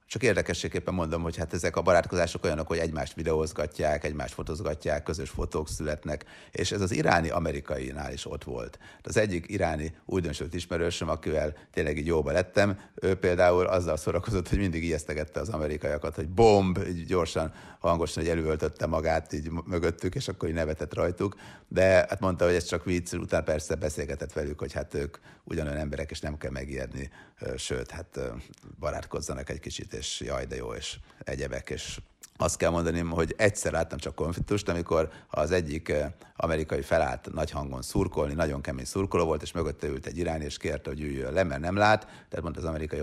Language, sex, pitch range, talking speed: Hungarian, male, 75-95 Hz, 175 wpm